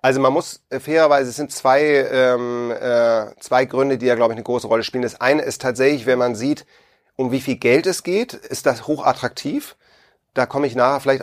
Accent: German